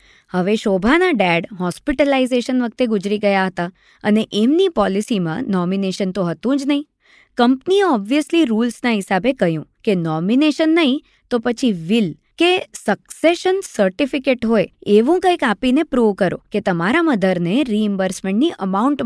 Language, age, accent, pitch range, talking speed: Gujarati, 20-39, native, 195-290 Hz, 110 wpm